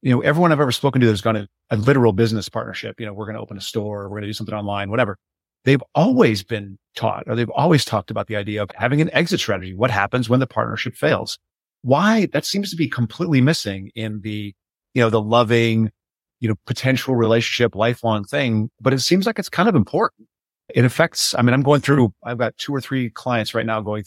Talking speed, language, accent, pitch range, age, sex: 235 wpm, English, American, 105-130 Hz, 30-49, male